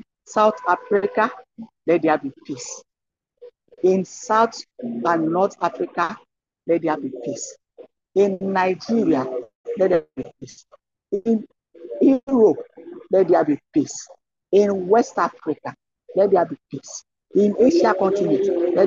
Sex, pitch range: male, 175-250 Hz